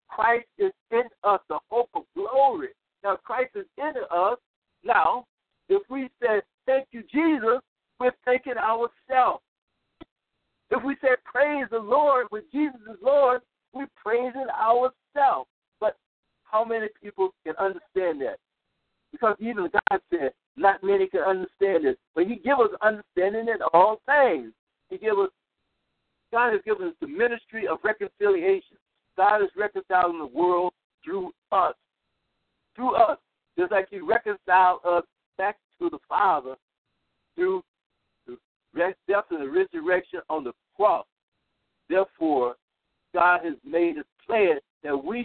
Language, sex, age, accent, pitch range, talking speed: English, male, 60-79, American, 195-325 Hz, 140 wpm